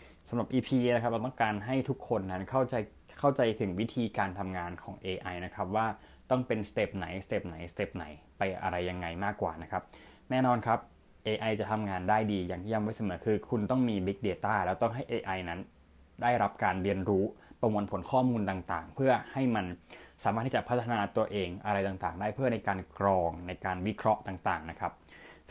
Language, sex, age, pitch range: Thai, male, 20-39, 95-115 Hz